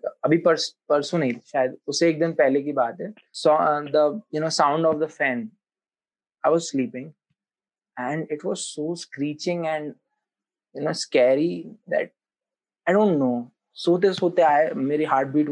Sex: male